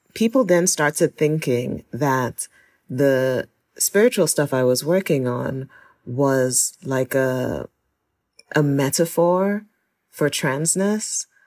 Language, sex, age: English, female, 30-49